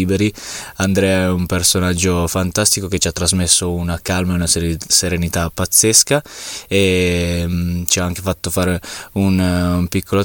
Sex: male